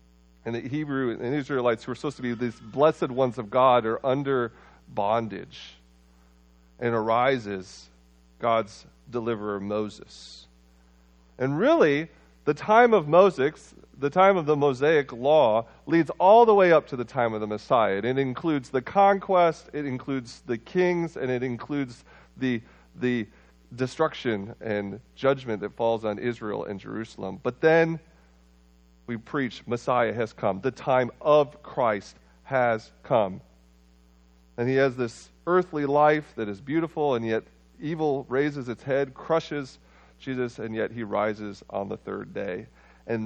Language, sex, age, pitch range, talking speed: English, male, 40-59, 95-140 Hz, 150 wpm